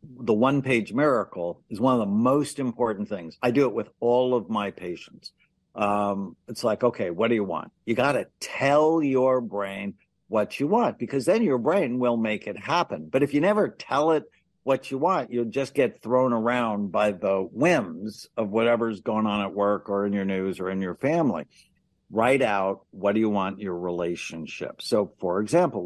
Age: 60-79